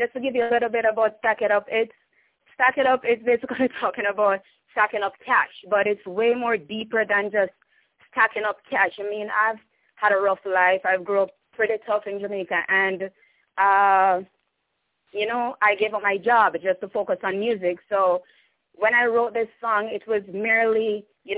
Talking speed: 195 wpm